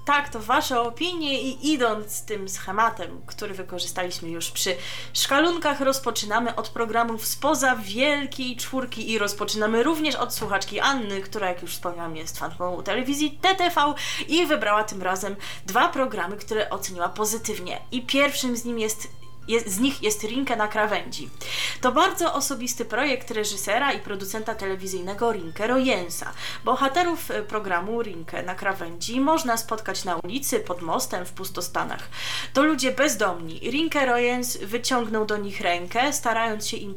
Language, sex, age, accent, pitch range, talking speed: Polish, female, 20-39, native, 190-265 Hz, 145 wpm